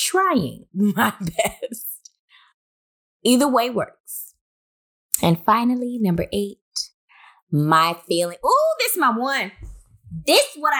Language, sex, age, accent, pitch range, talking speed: English, female, 20-39, American, 135-200 Hz, 110 wpm